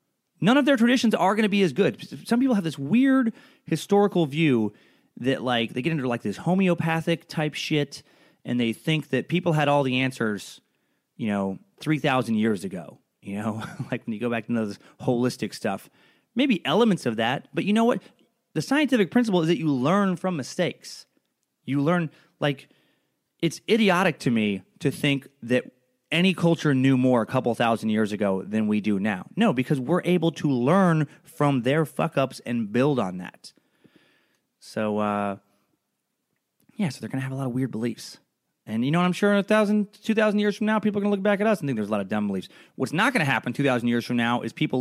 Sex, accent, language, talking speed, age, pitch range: male, American, English, 215 wpm, 30-49, 120-180 Hz